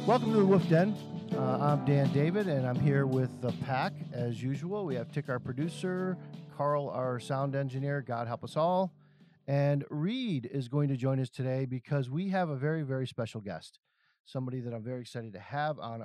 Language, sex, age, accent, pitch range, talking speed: English, male, 50-69, American, 125-155 Hz, 200 wpm